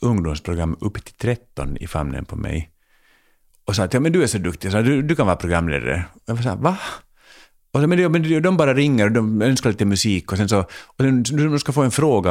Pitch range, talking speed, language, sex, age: 85-125 Hz, 235 wpm, Swedish, male, 50-69